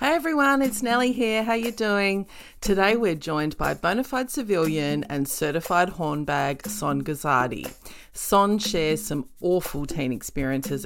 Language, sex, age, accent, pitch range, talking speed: English, female, 30-49, Australian, 150-210 Hz, 145 wpm